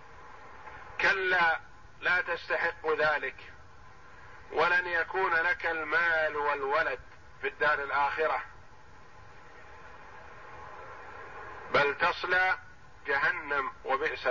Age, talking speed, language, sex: 50-69, 65 wpm, Arabic, male